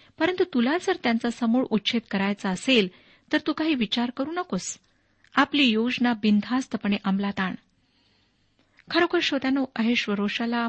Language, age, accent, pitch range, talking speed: Marathi, 50-69, native, 205-255 Hz, 130 wpm